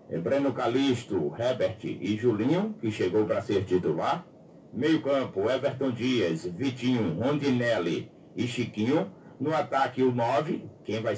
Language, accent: Portuguese, Brazilian